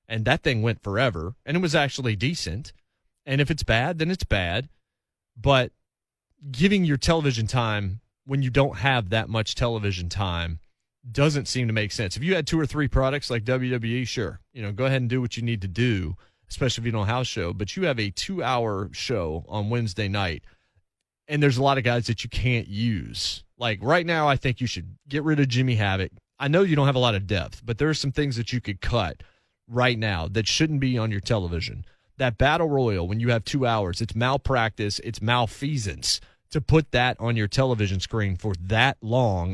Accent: American